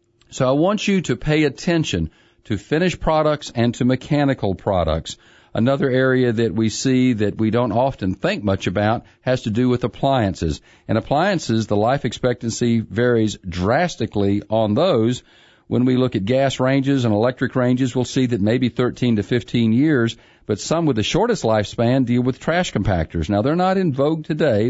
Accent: American